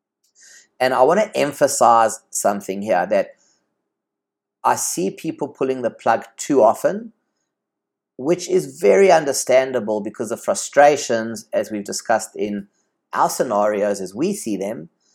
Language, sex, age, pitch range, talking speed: English, male, 30-49, 100-120 Hz, 130 wpm